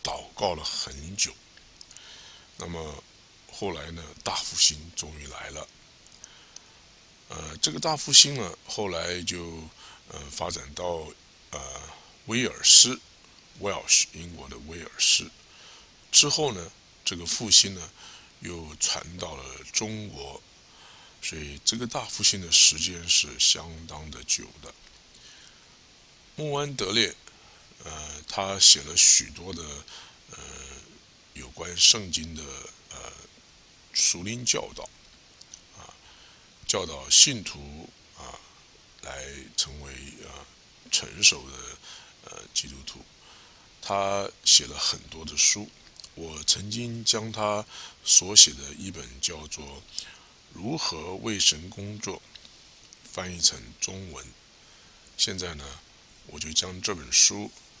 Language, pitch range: English, 75-100 Hz